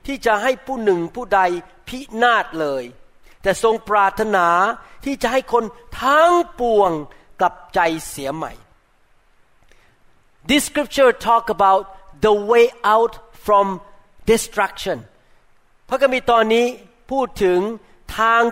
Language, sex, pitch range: Thai, male, 175-235 Hz